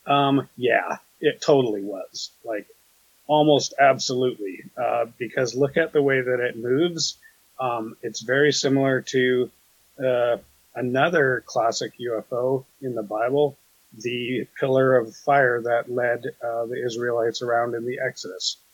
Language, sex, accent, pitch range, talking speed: English, male, American, 120-140 Hz, 135 wpm